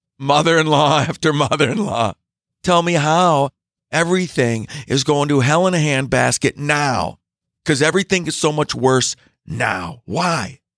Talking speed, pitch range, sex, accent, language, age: 130 wpm, 110-165 Hz, male, American, English, 40-59